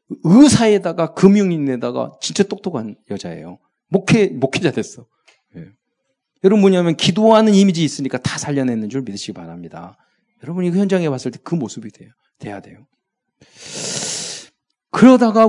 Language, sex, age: Korean, male, 40-59